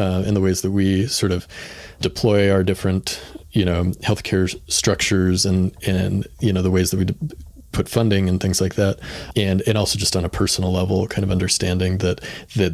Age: 30-49